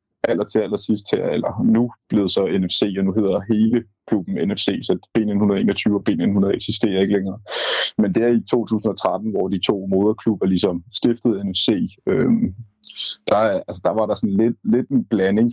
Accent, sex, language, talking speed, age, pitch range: native, male, Danish, 180 wpm, 20-39, 95-115 Hz